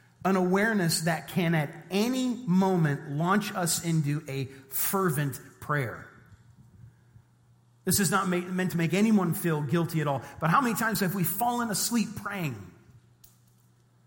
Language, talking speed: English, 140 wpm